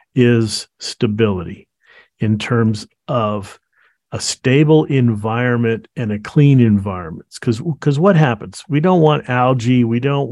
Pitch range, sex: 105-130 Hz, male